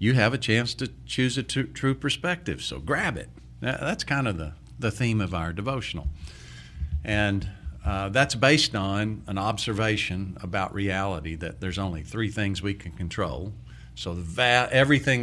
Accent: American